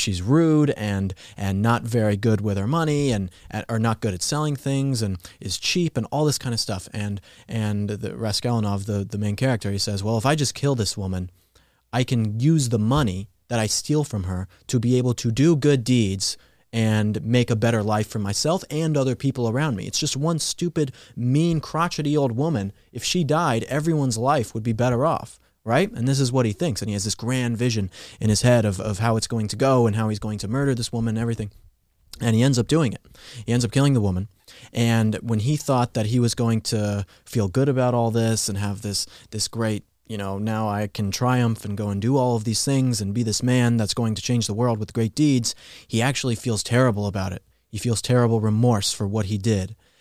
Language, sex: English, male